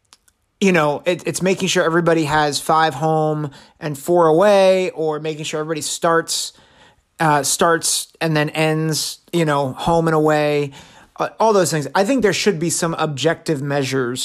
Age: 30-49